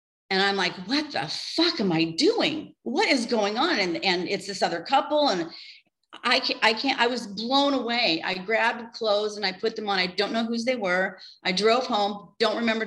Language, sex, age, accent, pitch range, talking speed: English, female, 40-59, American, 170-220 Hz, 220 wpm